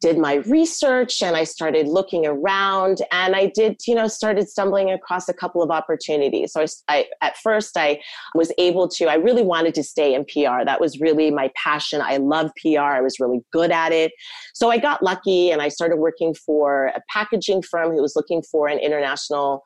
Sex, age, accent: female, 30-49, American